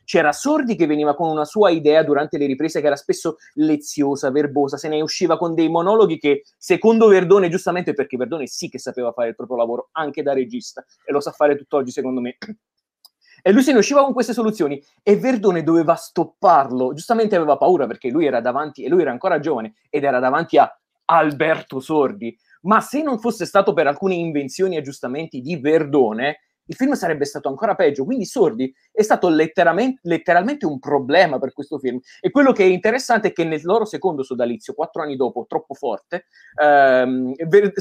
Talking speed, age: 190 wpm, 20-39